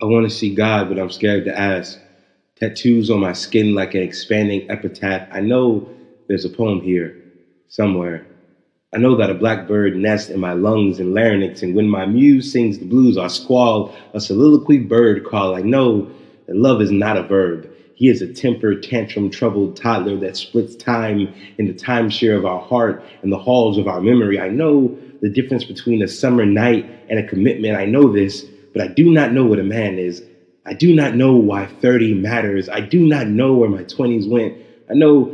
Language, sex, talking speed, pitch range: English, male, 200 wpm, 95-120 Hz